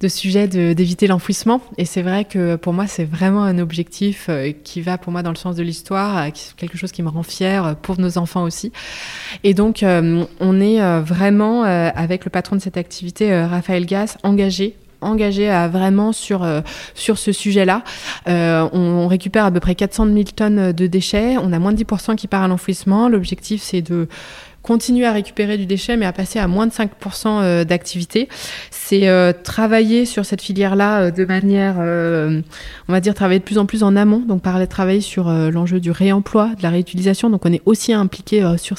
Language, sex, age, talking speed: French, female, 20-39, 200 wpm